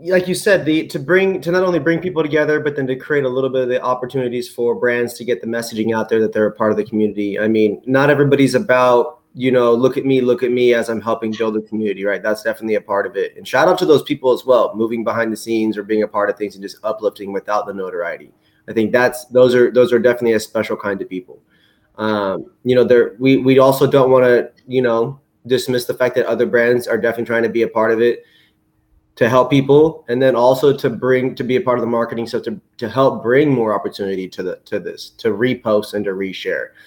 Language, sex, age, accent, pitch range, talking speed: English, male, 20-39, American, 110-130 Hz, 255 wpm